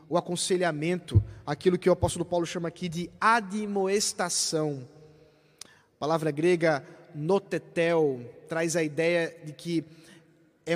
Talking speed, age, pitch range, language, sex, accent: 115 wpm, 20-39, 165-215 Hz, Portuguese, male, Brazilian